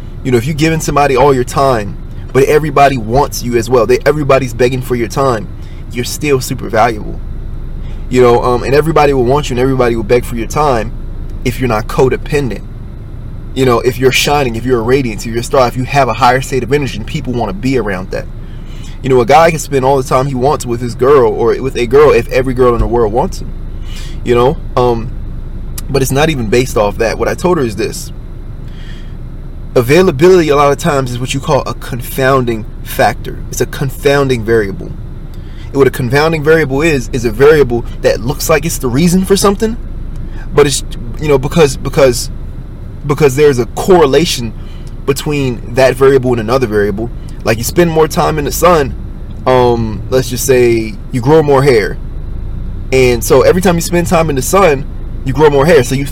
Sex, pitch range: male, 115-145 Hz